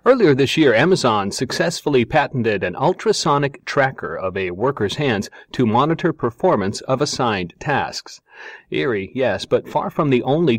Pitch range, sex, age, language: 110-145 Hz, male, 40-59, English